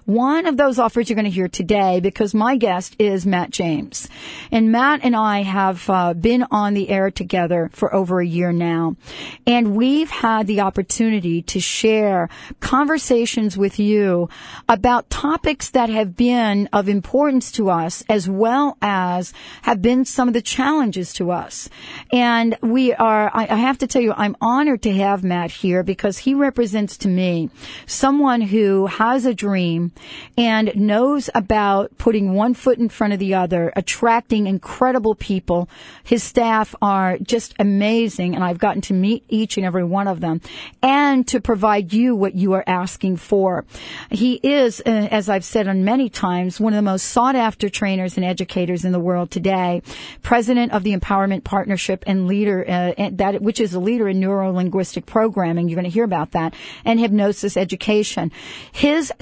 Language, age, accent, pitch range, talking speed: English, 40-59, American, 185-235 Hz, 175 wpm